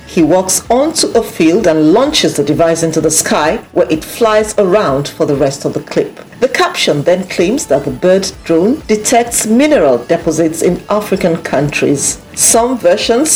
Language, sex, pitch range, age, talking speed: English, female, 165-240 Hz, 50-69, 170 wpm